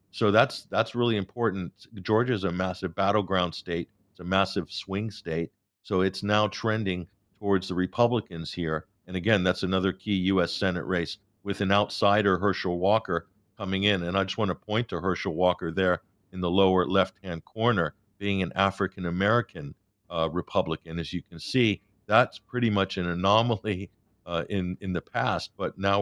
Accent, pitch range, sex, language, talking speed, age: American, 90-105 Hz, male, English, 175 wpm, 50-69